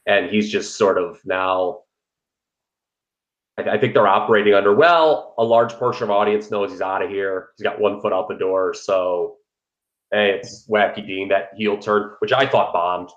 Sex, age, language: male, 30-49, English